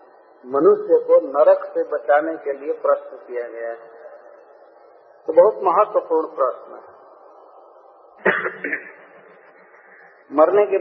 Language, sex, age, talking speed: Hindi, male, 50-69, 90 wpm